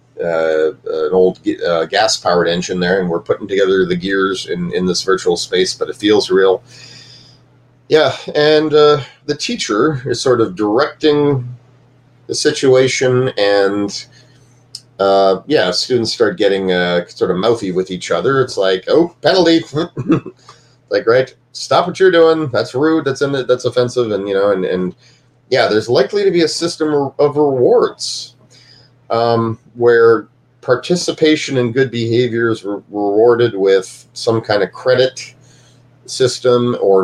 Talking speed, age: 150 wpm, 30-49